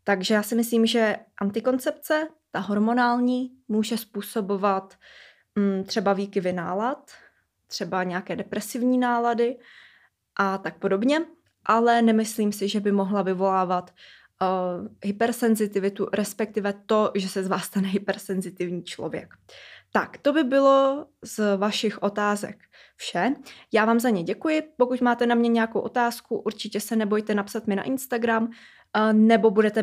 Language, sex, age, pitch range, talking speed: Czech, female, 20-39, 195-235 Hz, 130 wpm